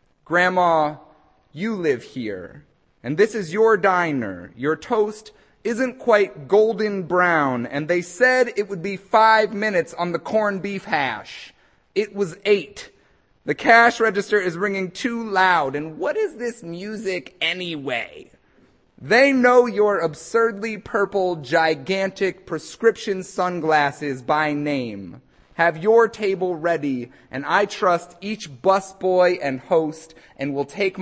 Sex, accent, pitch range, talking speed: male, American, 150-205 Hz, 130 wpm